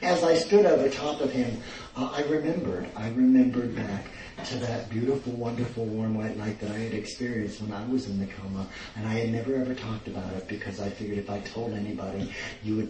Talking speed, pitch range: 220 wpm, 105-125 Hz